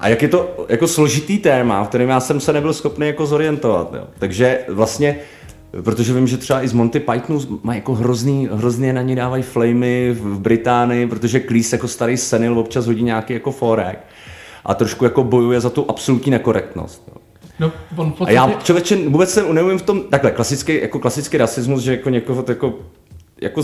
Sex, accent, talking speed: male, native, 190 wpm